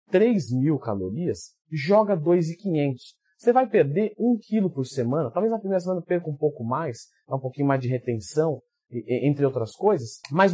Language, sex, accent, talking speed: Portuguese, male, Brazilian, 165 wpm